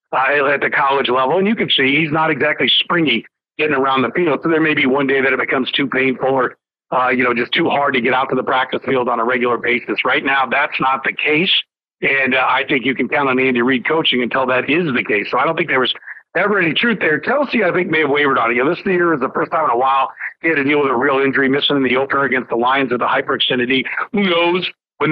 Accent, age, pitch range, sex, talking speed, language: American, 50-69, 135-160 Hz, male, 280 wpm, English